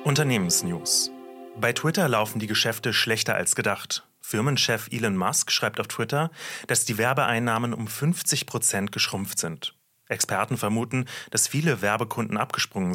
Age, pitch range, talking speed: 30-49, 100-130 Hz, 135 wpm